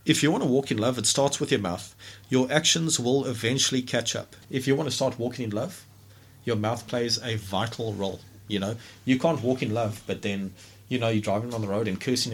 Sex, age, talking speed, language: male, 30-49, 245 wpm, English